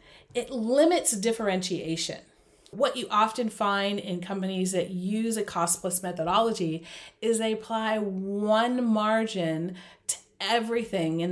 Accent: American